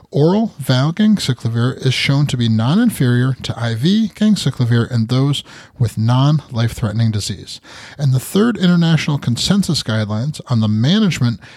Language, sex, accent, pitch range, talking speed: English, male, American, 115-160 Hz, 125 wpm